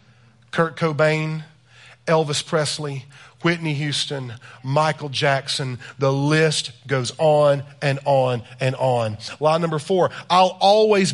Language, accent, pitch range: English, American, 145-205 Hz